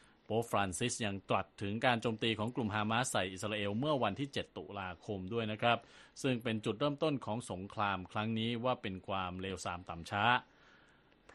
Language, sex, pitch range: Thai, male, 95-120 Hz